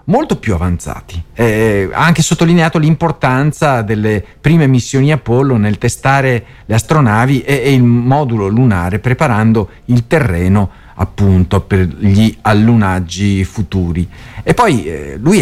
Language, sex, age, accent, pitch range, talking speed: Italian, male, 50-69, native, 100-140 Hz, 130 wpm